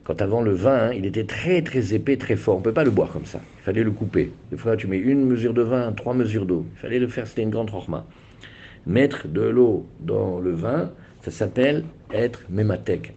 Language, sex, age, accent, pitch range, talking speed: French, male, 50-69, French, 90-120 Hz, 240 wpm